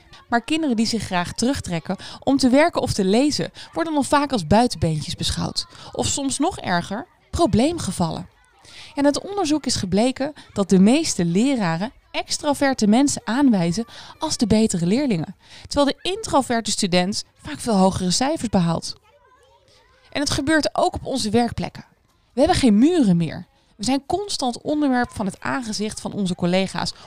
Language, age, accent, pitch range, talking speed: Dutch, 20-39, Dutch, 190-275 Hz, 155 wpm